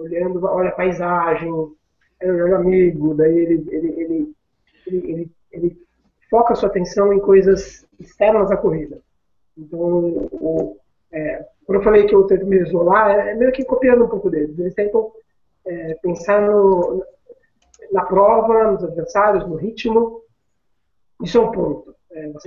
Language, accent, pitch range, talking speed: Portuguese, Brazilian, 175-220 Hz, 160 wpm